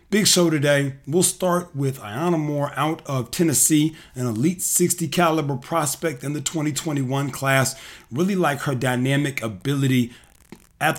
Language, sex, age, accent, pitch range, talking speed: English, male, 40-59, American, 125-155 Hz, 140 wpm